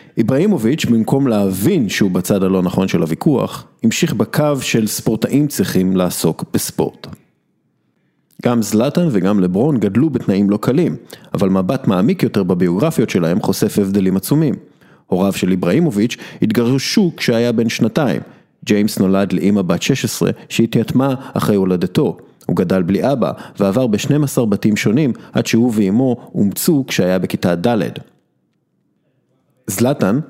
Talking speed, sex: 125 wpm, male